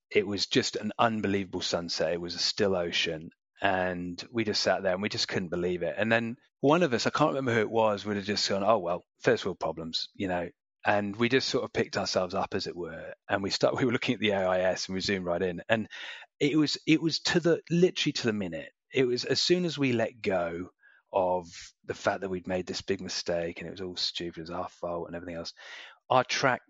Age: 30-49